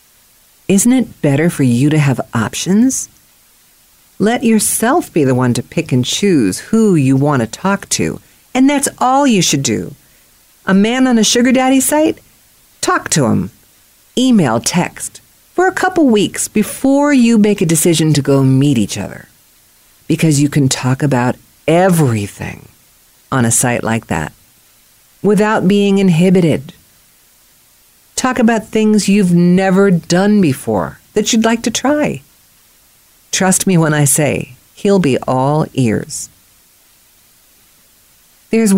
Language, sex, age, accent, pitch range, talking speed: English, female, 50-69, American, 130-215 Hz, 140 wpm